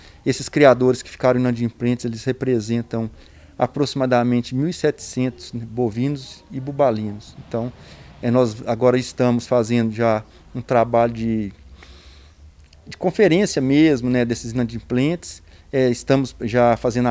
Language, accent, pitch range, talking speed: Portuguese, Brazilian, 115-130 Hz, 120 wpm